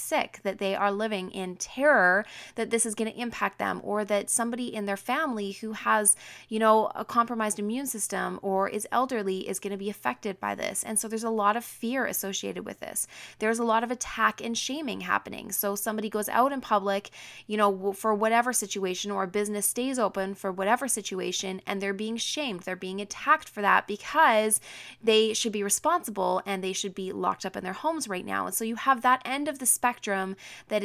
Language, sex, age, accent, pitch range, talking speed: English, female, 20-39, American, 195-225 Hz, 215 wpm